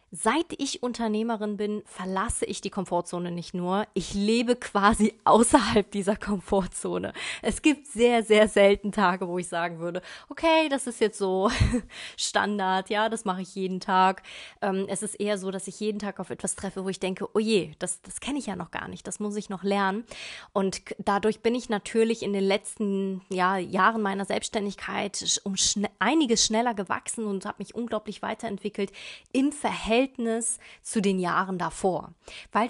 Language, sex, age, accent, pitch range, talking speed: German, female, 20-39, German, 185-220 Hz, 170 wpm